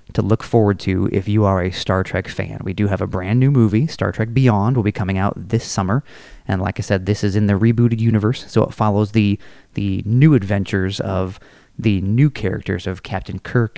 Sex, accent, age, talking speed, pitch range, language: male, American, 30-49, 220 wpm, 100-115 Hz, English